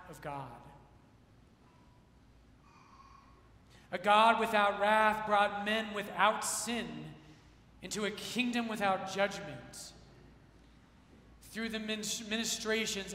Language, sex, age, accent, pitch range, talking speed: English, male, 30-49, American, 170-210 Hz, 80 wpm